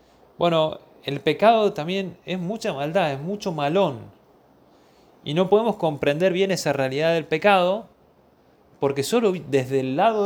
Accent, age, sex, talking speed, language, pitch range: Argentinian, 20-39, male, 140 wpm, Spanish, 135-200 Hz